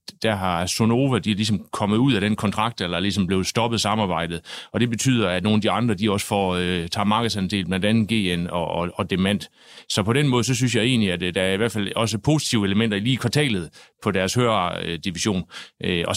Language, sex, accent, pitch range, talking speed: Danish, male, native, 95-115 Hz, 240 wpm